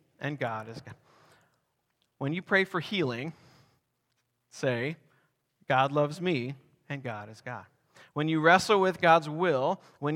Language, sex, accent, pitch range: English, male, American, 135-170 Hz